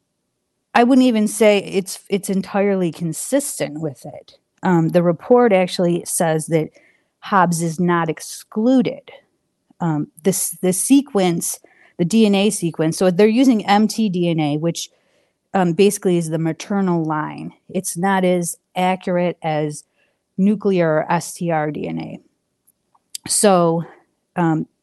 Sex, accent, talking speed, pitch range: female, American, 120 wpm, 165-200 Hz